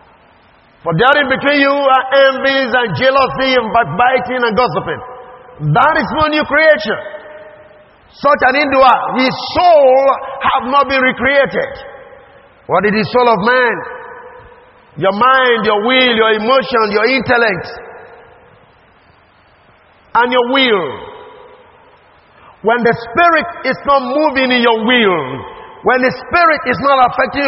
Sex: male